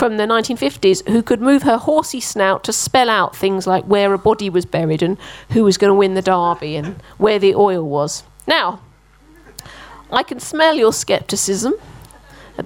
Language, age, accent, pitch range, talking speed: English, 40-59, British, 185-245 Hz, 185 wpm